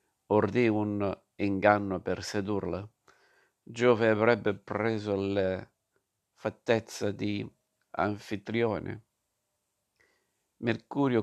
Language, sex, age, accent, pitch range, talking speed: Italian, male, 50-69, native, 100-115 Hz, 70 wpm